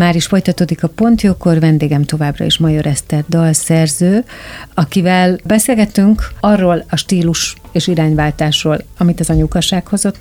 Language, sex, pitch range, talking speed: Hungarian, female, 160-180 Hz, 125 wpm